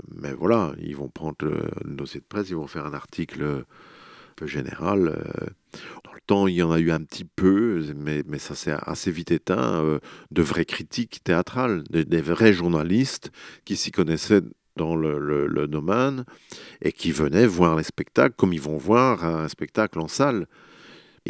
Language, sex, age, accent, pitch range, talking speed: French, male, 50-69, French, 75-95 Hz, 185 wpm